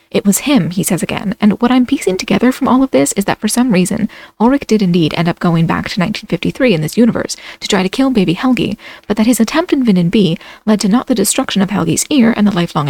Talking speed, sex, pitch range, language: 260 wpm, female, 185-240 Hz, English